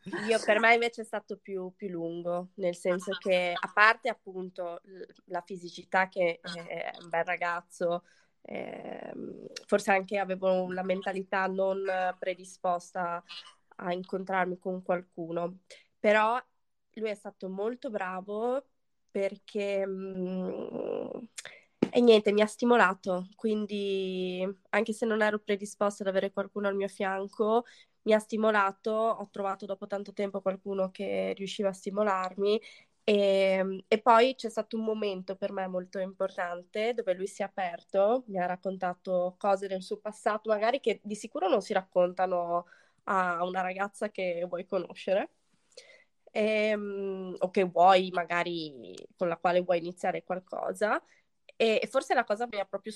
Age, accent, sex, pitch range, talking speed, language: 20-39, native, female, 185-215 Hz, 145 wpm, Italian